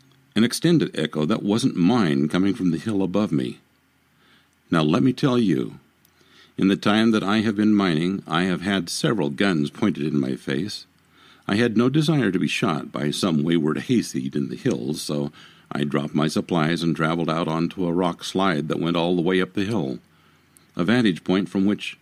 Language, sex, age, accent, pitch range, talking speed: English, male, 60-79, American, 80-110 Hz, 200 wpm